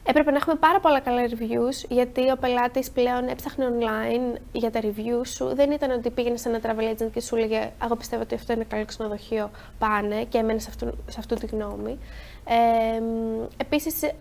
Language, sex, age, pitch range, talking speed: Greek, female, 20-39, 220-270 Hz, 180 wpm